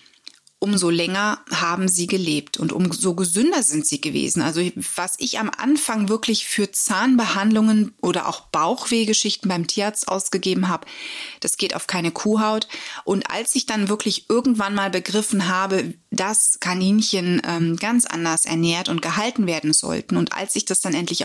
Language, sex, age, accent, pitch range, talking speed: German, female, 30-49, German, 180-220 Hz, 160 wpm